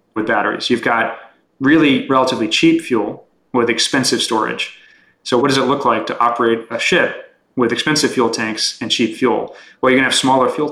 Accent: American